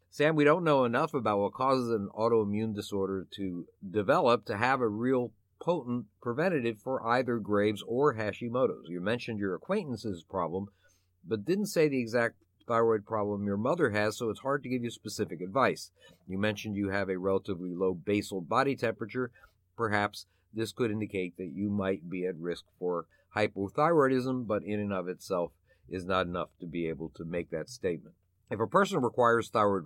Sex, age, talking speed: male, 50-69, 180 wpm